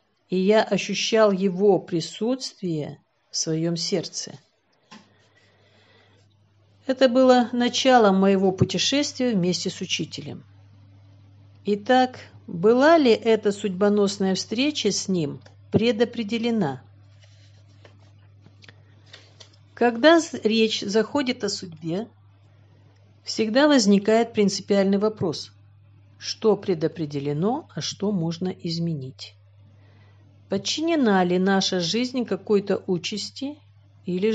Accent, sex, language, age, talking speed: native, female, Russian, 50-69, 80 wpm